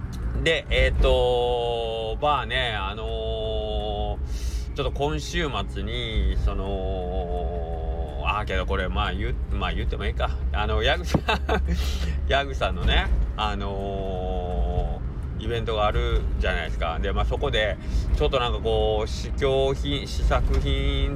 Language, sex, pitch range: Japanese, male, 65-110 Hz